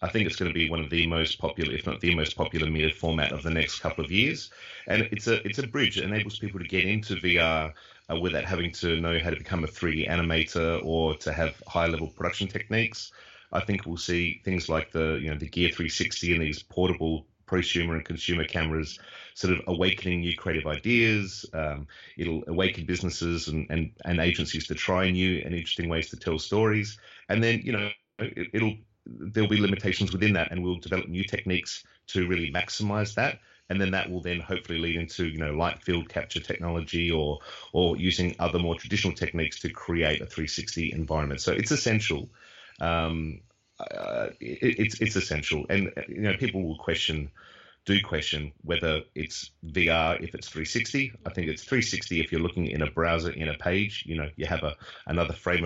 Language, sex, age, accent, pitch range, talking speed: English, male, 30-49, Australian, 80-95 Hz, 200 wpm